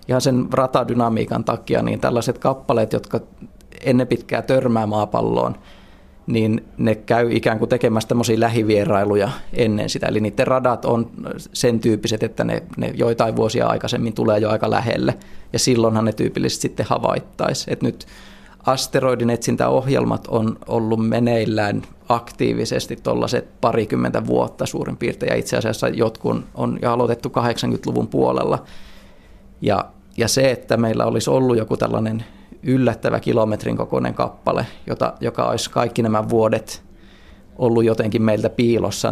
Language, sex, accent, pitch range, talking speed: Finnish, male, native, 105-120 Hz, 135 wpm